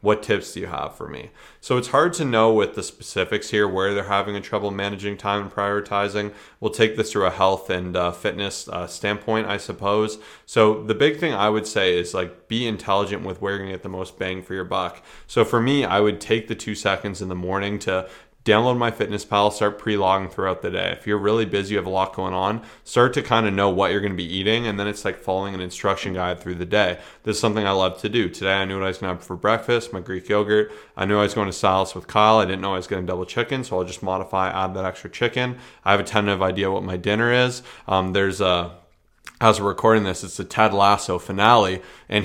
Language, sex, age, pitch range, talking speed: English, male, 20-39, 95-110 Hz, 255 wpm